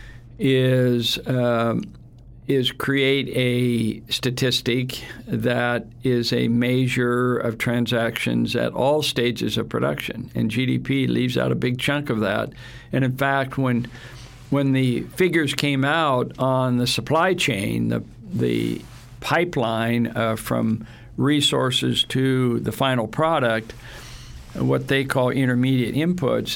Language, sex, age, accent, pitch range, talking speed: English, male, 60-79, American, 120-135 Hz, 120 wpm